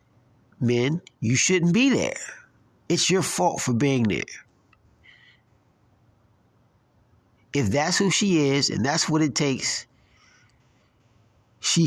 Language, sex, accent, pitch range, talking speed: English, male, American, 115-145 Hz, 110 wpm